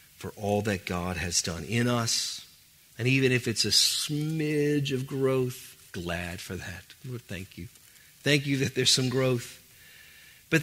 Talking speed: 165 wpm